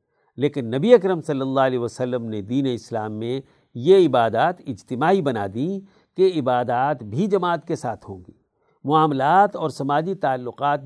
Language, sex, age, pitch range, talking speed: Urdu, male, 50-69, 135-200 Hz, 155 wpm